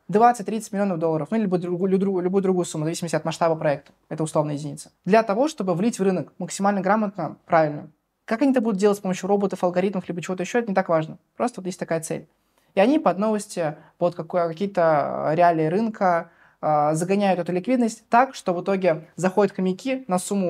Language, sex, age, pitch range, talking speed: Russian, male, 20-39, 160-195 Hz, 190 wpm